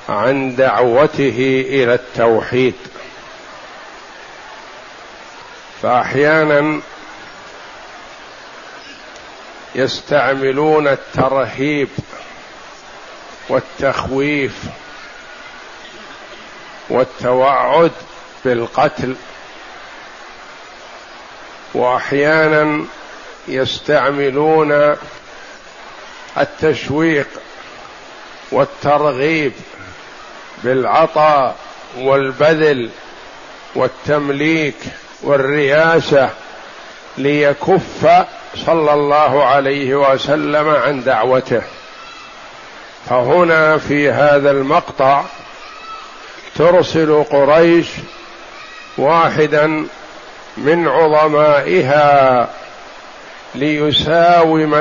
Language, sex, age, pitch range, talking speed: Arabic, male, 50-69, 135-155 Hz, 40 wpm